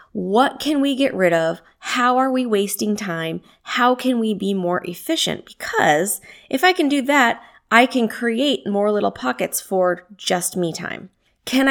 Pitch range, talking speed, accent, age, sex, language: 180-245 Hz, 175 wpm, American, 20-39, female, English